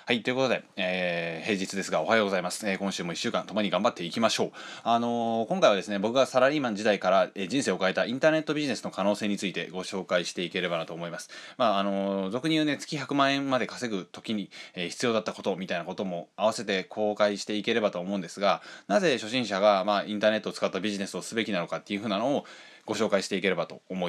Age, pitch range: 20-39, 100-120 Hz